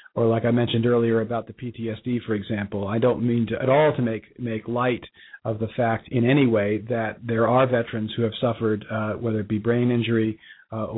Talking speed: 220 wpm